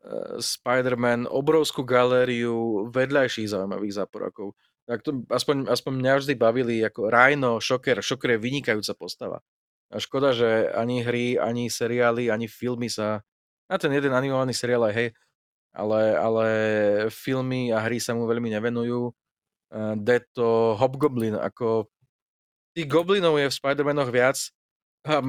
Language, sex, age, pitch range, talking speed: Slovak, male, 20-39, 110-130 Hz, 135 wpm